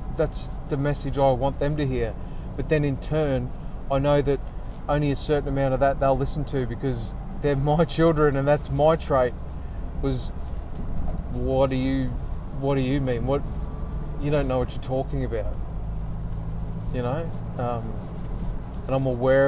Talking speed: 165 wpm